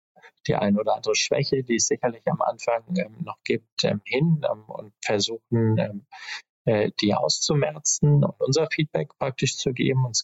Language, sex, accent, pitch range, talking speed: German, male, German, 110-150 Hz, 170 wpm